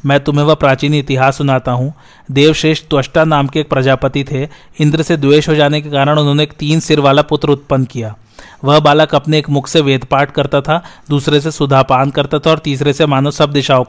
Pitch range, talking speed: 135-155 Hz, 120 wpm